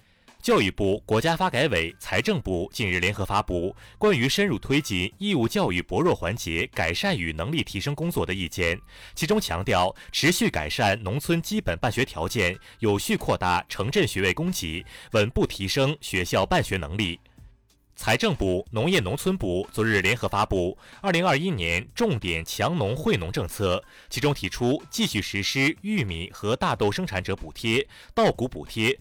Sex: male